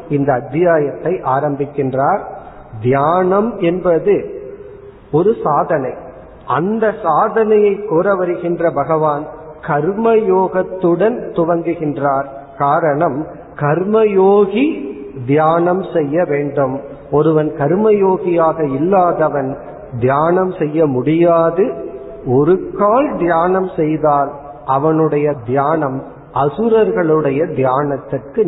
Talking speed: 70 wpm